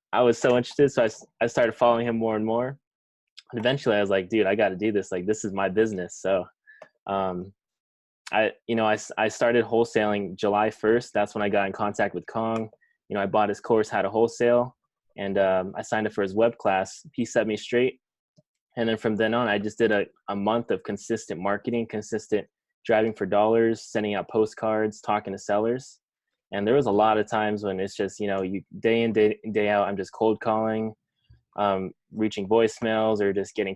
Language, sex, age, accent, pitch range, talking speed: English, male, 20-39, American, 100-115 Hz, 220 wpm